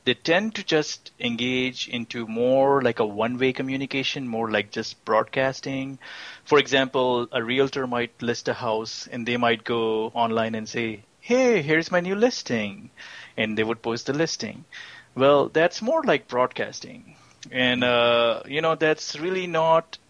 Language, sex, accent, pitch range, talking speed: English, male, Indian, 120-150 Hz, 160 wpm